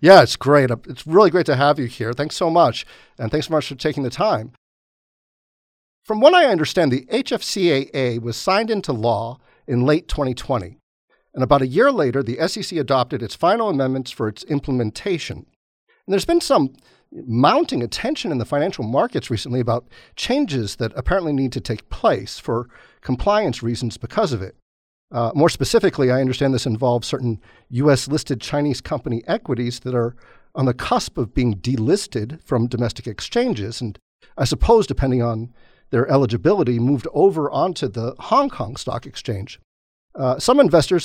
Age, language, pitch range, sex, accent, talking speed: 50-69, English, 120-150 Hz, male, American, 165 wpm